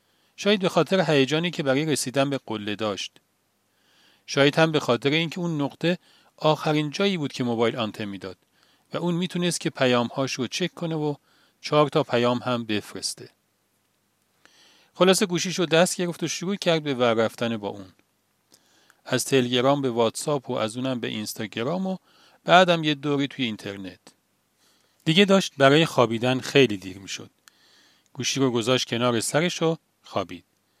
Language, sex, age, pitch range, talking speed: Persian, male, 40-59, 120-165 Hz, 155 wpm